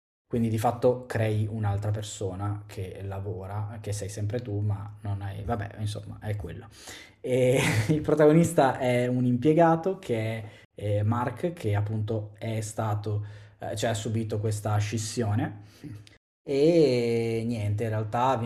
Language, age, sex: Italian, 20-39, male